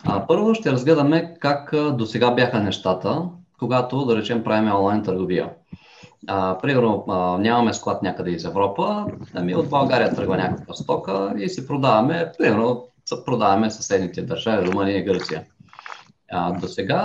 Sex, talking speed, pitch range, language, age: male, 130 wpm, 110-160 Hz, Bulgarian, 20-39